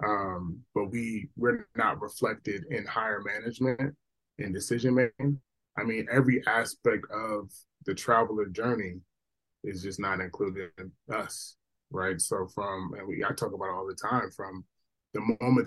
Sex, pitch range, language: male, 95-125 Hz, English